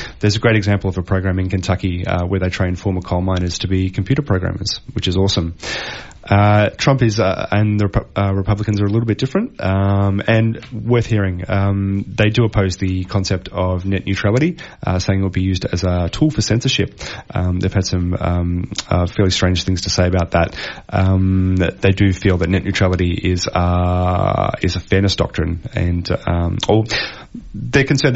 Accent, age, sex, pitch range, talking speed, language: Australian, 30-49, male, 90-105 Hz, 200 wpm, English